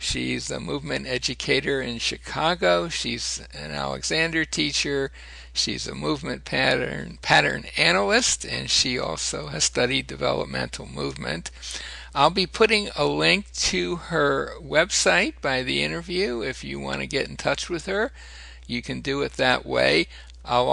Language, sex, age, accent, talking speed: English, male, 60-79, American, 145 wpm